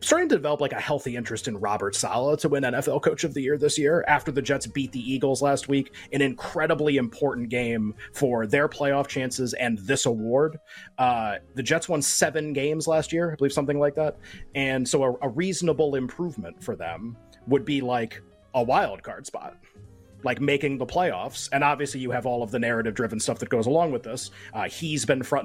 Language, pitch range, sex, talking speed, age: English, 120-150 Hz, male, 210 wpm, 30-49